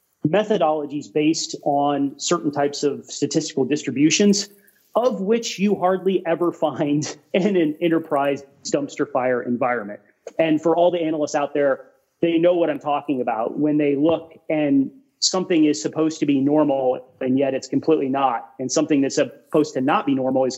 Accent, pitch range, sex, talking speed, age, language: American, 140-185 Hz, male, 165 wpm, 30-49, English